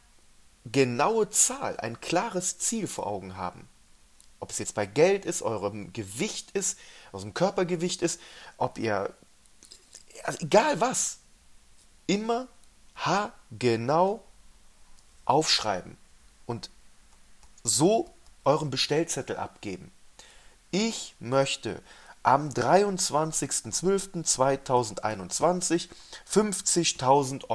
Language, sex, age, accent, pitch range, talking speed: German, male, 30-49, German, 115-170 Hz, 85 wpm